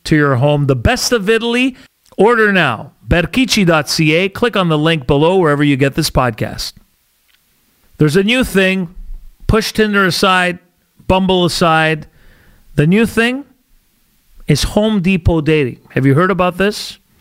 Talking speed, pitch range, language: 140 wpm, 135-180 Hz, English